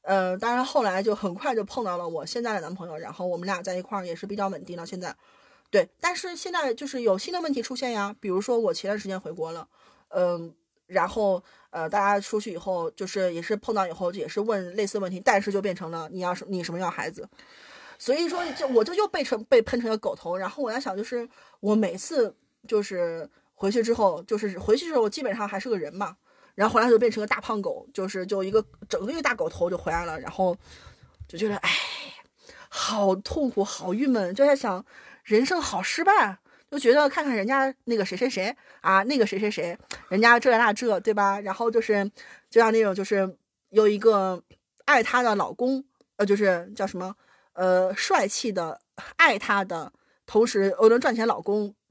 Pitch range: 190-240 Hz